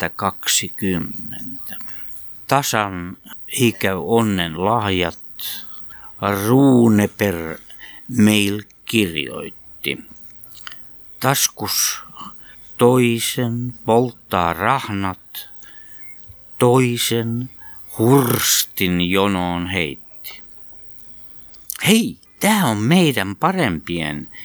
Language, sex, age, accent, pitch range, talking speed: Finnish, male, 60-79, native, 90-120 Hz, 50 wpm